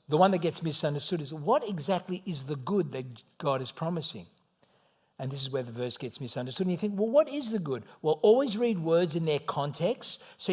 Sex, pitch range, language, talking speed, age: male, 140-195 Hz, English, 220 wpm, 60-79